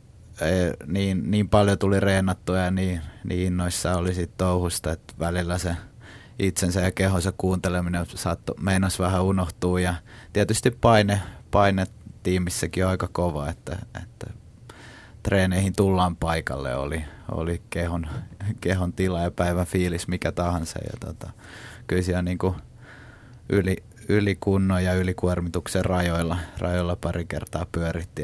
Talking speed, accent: 125 wpm, native